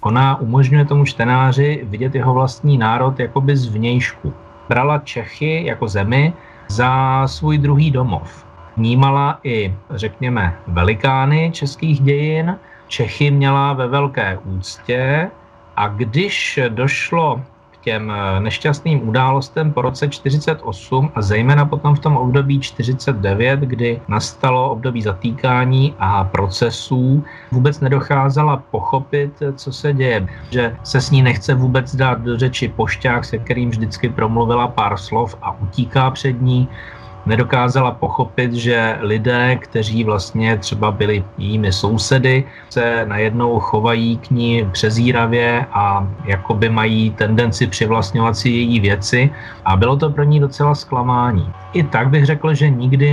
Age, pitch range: 30-49, 115-140 Hz